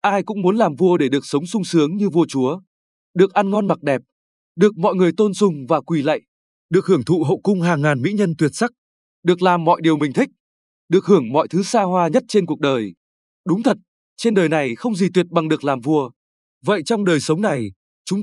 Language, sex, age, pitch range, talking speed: Vietnamese, male, 20-39, 155-200 Hz, 235 wpm